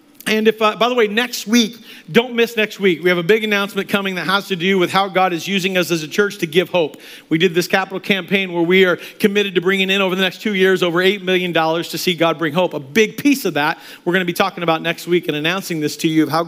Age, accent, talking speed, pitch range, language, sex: 40-59, American, 290 wpm, 165-220 Hz, English, male